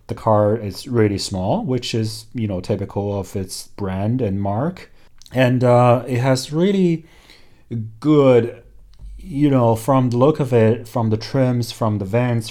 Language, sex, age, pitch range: Chinese, male, 30-49, 100-120 Hz